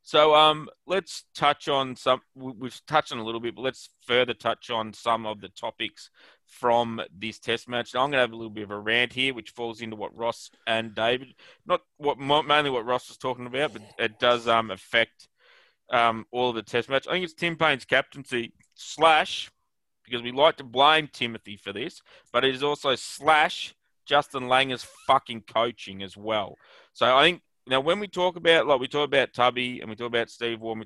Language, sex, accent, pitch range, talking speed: English, male, Australian, 110-140 Hz, 210 wpm